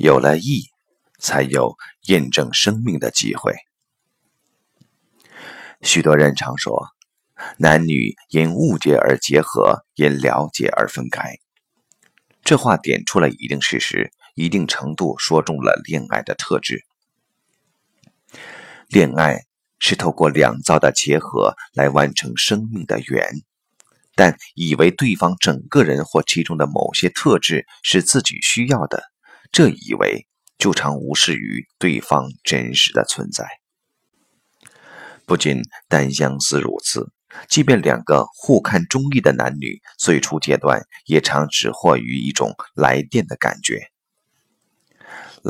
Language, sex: Chinese, male